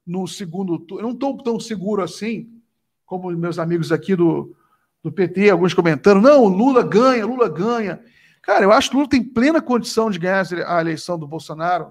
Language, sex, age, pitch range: Portuguese, male, 50-69, 170-225 Hz